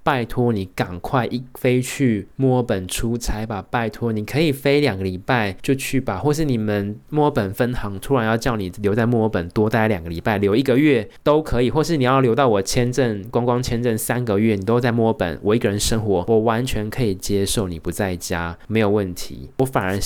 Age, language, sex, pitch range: 20-39, Chinese, male, 95-125 Hz